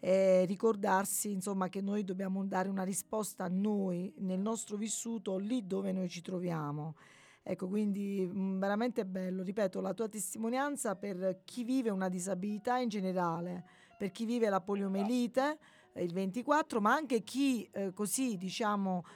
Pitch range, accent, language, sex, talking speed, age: 195-245 Hz, native, Italian, female, 145 wpm, 40-59